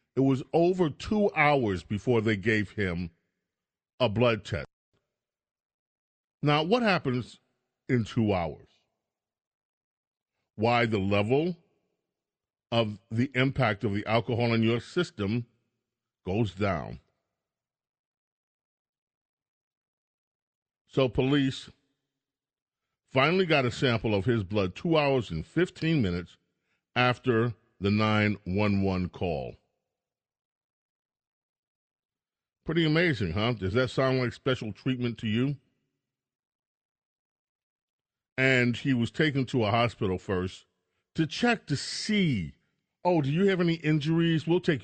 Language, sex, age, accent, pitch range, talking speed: English, male, 40-59, American, 105-140 Hz, 110 wpm